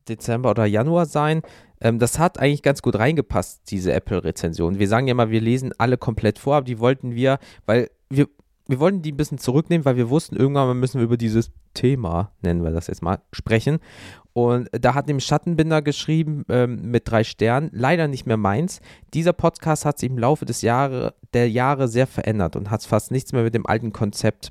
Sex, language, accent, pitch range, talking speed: male, German, German, 110-145 Hz, 200 wpm